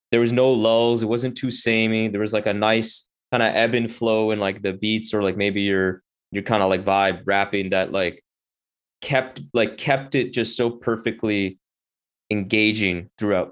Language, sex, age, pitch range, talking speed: English, male, 20-39, 100-125 Hz, 190 wpm